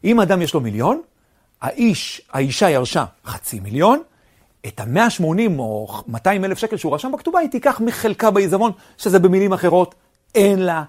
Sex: male